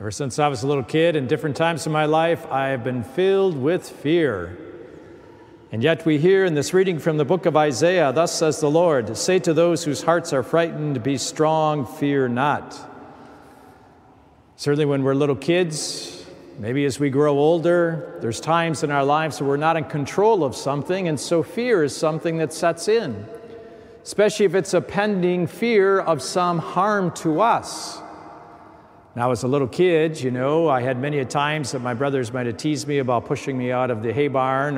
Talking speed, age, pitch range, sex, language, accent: 195 wpm, 50-69, 140-180 Hz, male, English, American